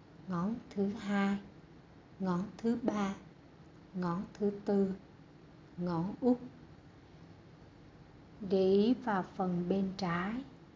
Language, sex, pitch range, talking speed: Vietnamese, female, 160-200 Hz, 95 wpm